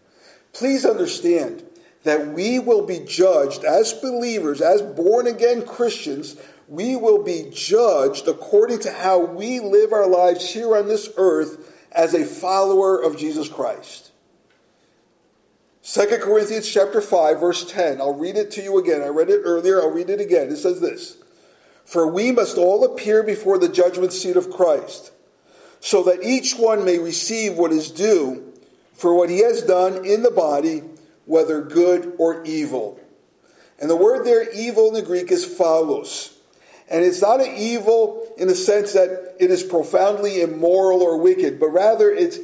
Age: 50-69